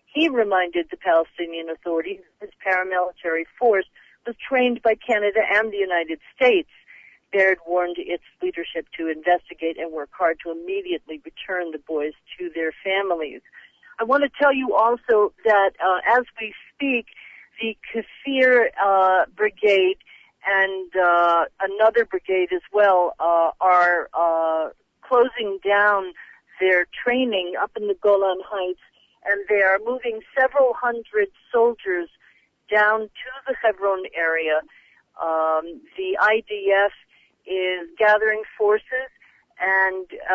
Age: 50-69